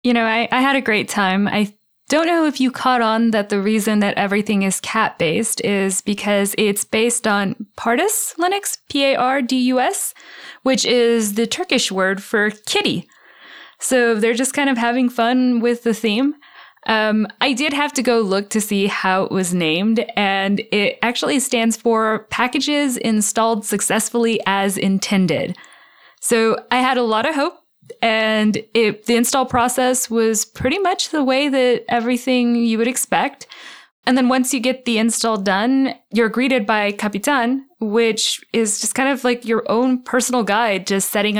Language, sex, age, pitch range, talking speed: English, female, 20-39, 205-255 Hz, 165 wpm